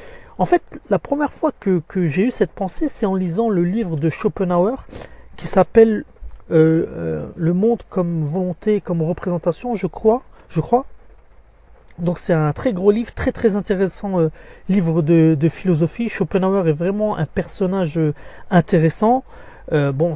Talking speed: 160 wpm